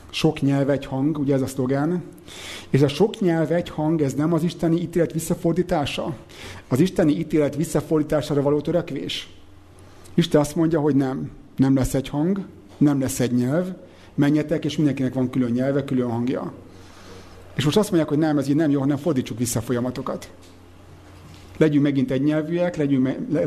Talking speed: 175 wpm